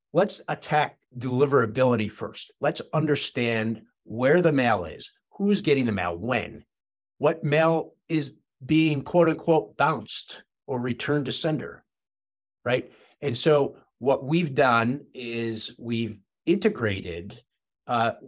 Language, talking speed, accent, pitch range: English, 120 wpm, American, 110-145 Hz